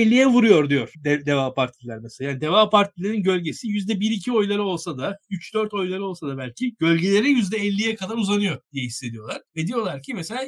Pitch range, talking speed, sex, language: 165-220 Hz, 165 wpm, male, Turkish